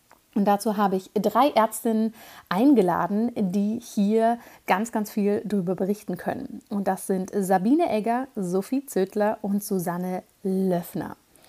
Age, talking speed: 50-69, 130 wpm